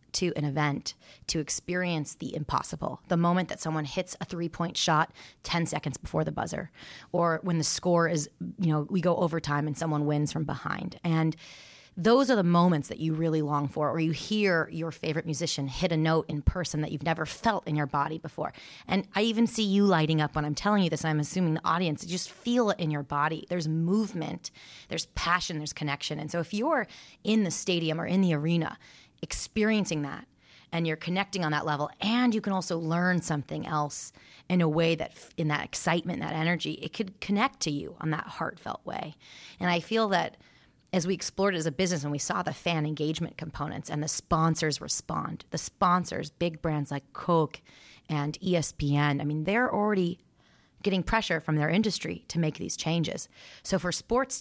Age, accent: 30-49, American